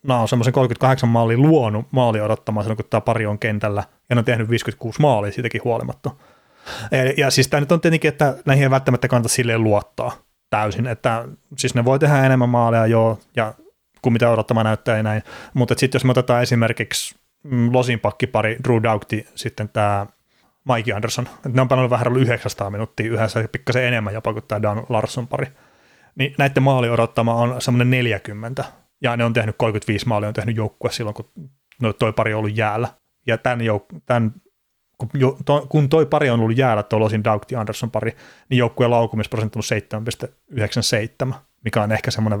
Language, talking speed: Finnish, 190 wpm